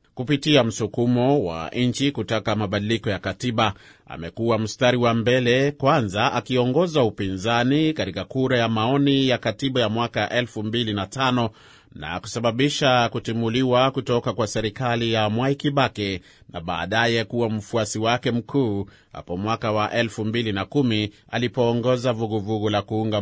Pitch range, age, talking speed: 110-130 Hz, 30-49, 120 wpm